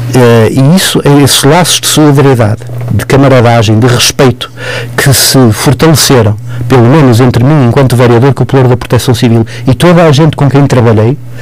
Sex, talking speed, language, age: male, 170 wpm, Portuguese, 50-69